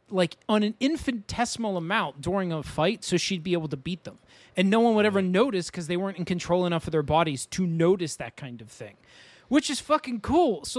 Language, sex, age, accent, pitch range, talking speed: English, male, 30-49, American, 155-220 Hz, 230 wpm